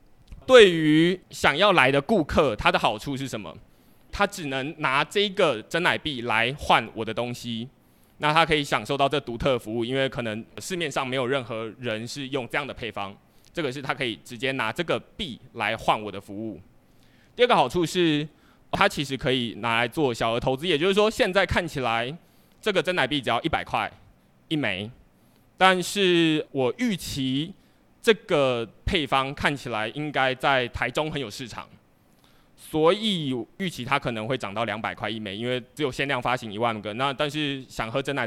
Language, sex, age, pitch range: Chinese, male, 20-39, 115-155 Hz